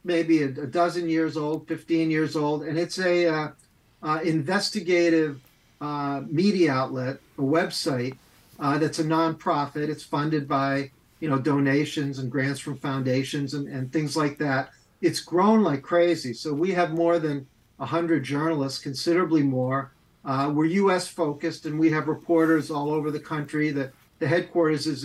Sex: male